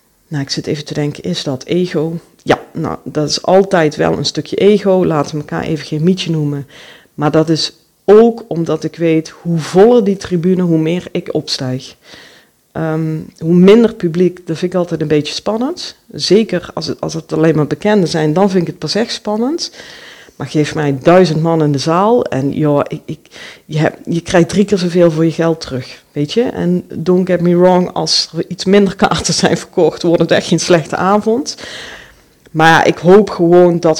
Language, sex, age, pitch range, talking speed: Dutch, female, 40-59, 155-185 Hz, 195 wpm